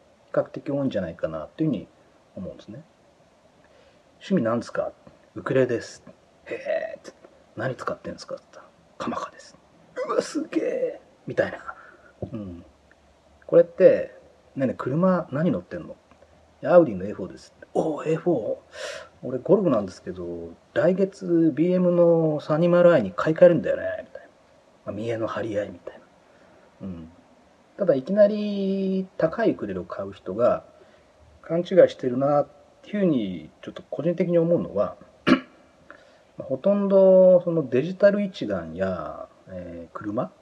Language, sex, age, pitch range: Japanese, male, 40-59, 145-200 Hz